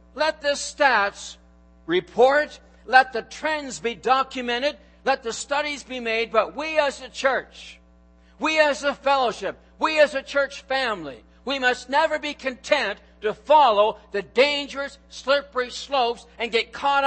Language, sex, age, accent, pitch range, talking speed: English, male, 60-79, American, 220-285 Hz, 150 wpm